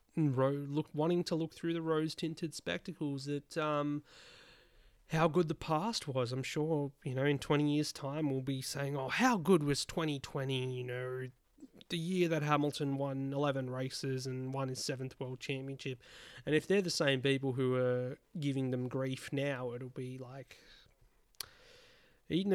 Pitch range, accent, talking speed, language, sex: 135-160 Hz, Australian, 175 wpm, English, male